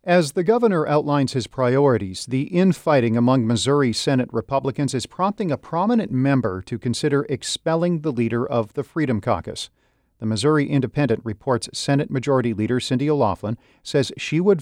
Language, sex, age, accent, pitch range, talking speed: English, male, 40-59, American, 110-140 Hz, 155 wpm